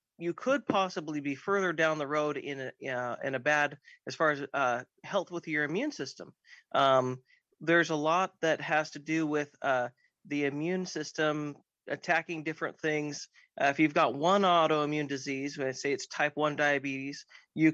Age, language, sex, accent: 30-49, English, male, American